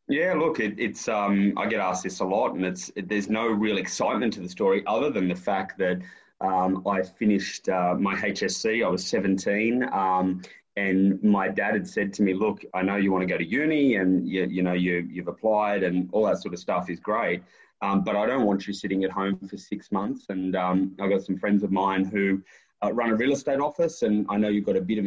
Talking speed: 235 wpm